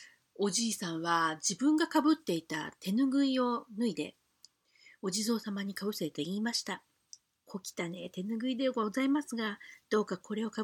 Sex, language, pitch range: female, Japanese, 175-245 Hz